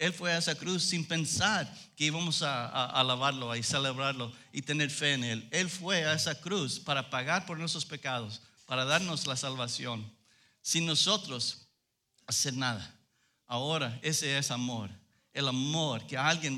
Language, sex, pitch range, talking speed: English, male, 125-165 Hz, 165 wpm